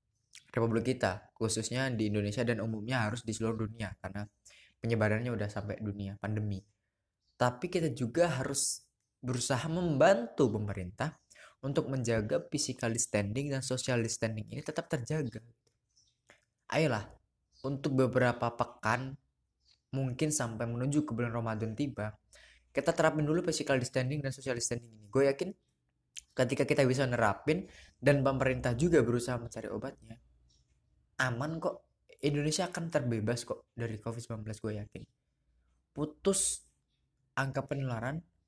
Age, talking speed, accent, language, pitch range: 20-39, 125 wpm, native, Indonesian, 110-140 Hz